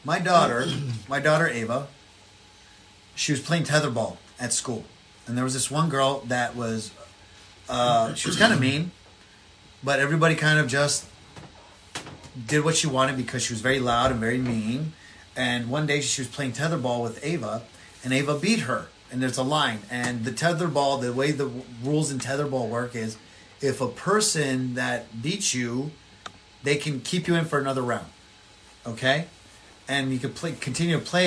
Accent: American